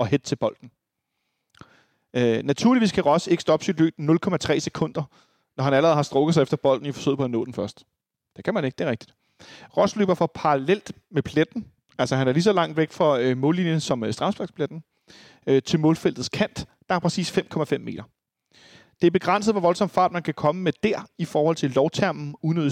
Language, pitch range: Danish, 130-170 Hz